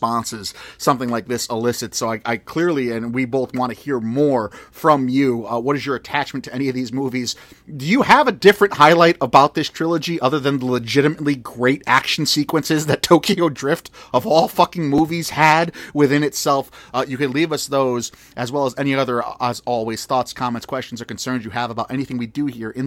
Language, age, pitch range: English, 30-49, 120-145 Hz